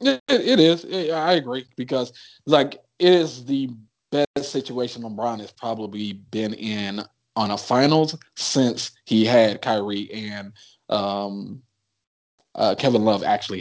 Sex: male